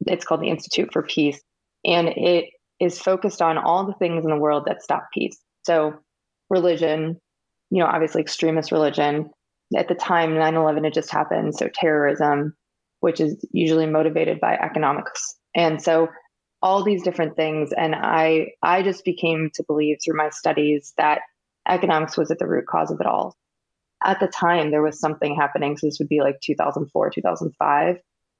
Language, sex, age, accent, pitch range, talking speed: English, female, 20-39, American, 150-170 Hz, 175 wpm